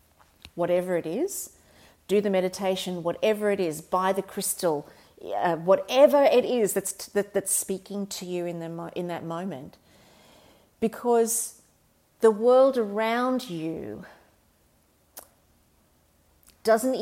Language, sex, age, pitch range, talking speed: English, female, 40-59, 185-245 Hz, 125 wpm